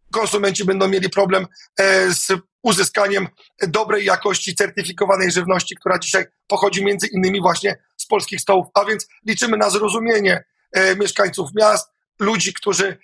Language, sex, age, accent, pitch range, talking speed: Polish, male, 30-49, native, 190-215 Hz, 140 wpm